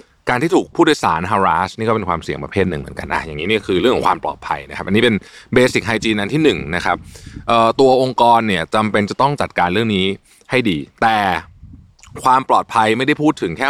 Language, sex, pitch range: Thai, male, 95-125 Hz